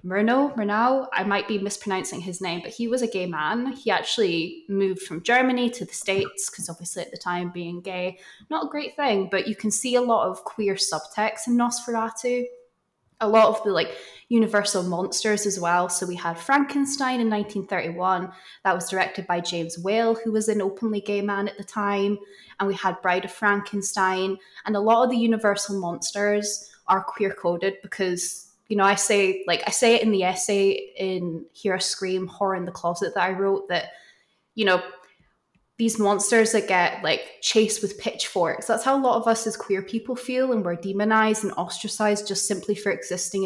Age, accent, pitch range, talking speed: 20-39, British, 185-215 Hz, 195 wpm